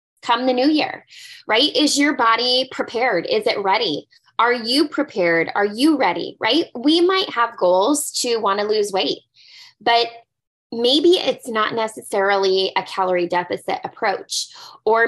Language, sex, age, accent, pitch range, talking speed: English, female, 20-39, American, 195-270 Hz, 150 wpm